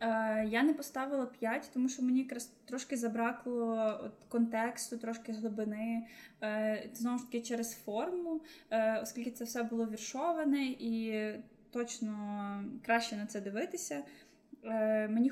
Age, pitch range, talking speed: 10-29, 220-250 Hz, 120 wpm